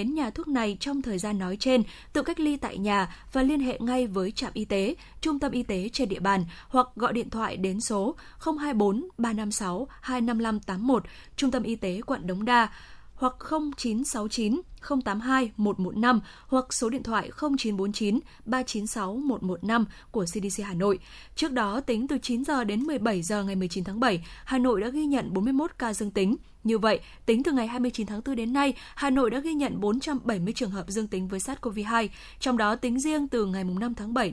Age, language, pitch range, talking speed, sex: 10-29, Vietnamese, 205-255 Hz, 190 wpm, female